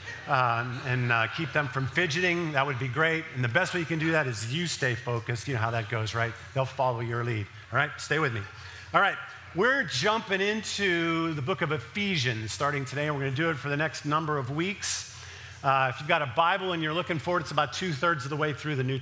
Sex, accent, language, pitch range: male, American, English, 115-155 Hz